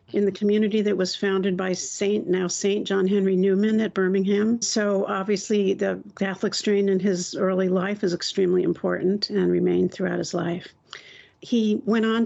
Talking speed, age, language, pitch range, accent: 170 wpm, 50-69, English, 180-210 Hz, American